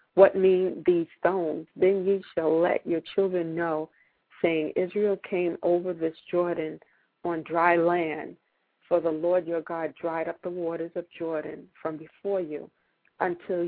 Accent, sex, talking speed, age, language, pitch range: American, female, 155 wpm, 50-69, English, 165-205 Hz